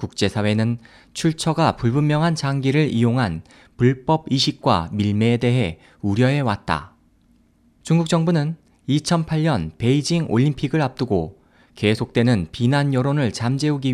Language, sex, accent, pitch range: Korean, male, native, 110-155 Hz